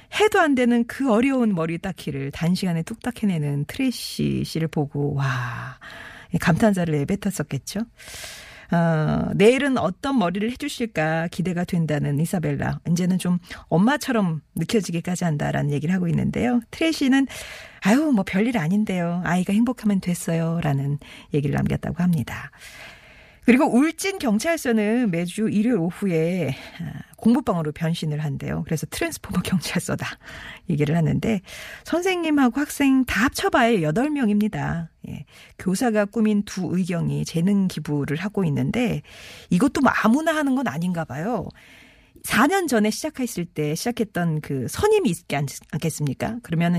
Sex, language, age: female, Korean, 40-59